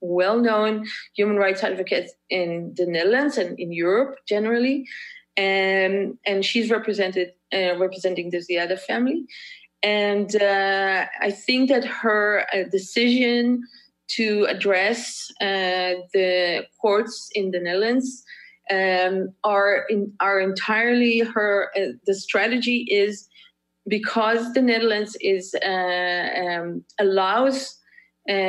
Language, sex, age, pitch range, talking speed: English, female, 20-39, 185-225 Hz, 120 wpm